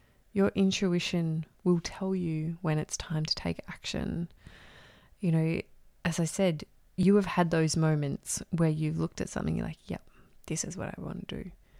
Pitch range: 150-195 Hz